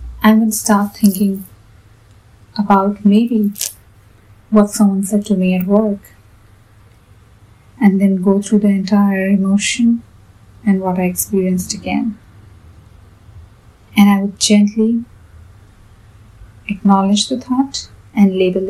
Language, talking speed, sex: English, 110 wpm, female